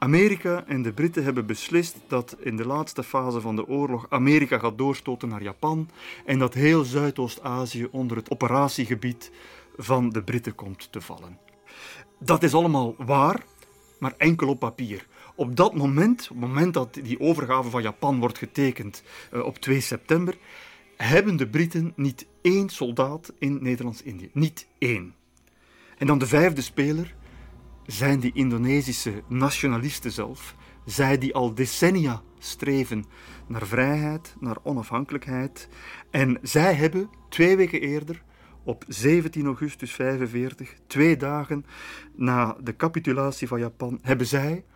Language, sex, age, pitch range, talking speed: Dutch, male, 40-59, 120-155 Hz, 140 wpm